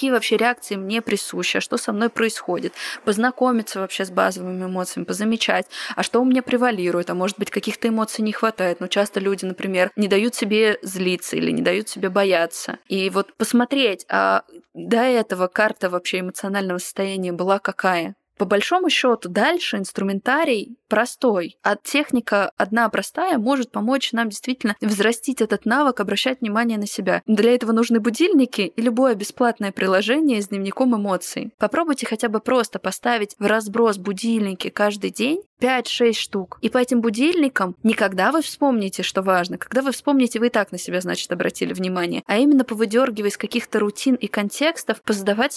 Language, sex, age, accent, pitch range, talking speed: Russian, female, 20-39, native, 195-250 Hz, 170 wpm